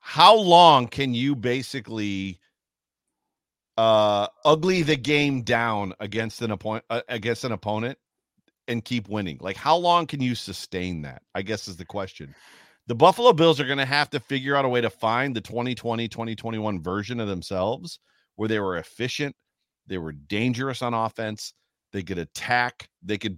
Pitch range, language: 105-135 Hz, English